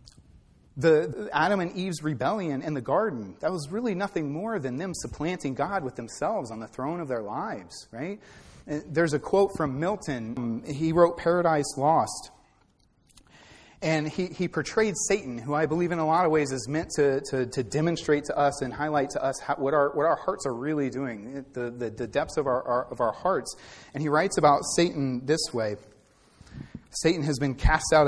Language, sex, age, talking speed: English, male, 30-49, 190 wpm